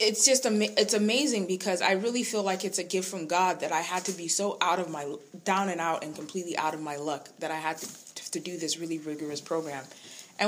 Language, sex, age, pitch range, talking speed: English, female, 20-39, 155-215 Hz, 250 wpm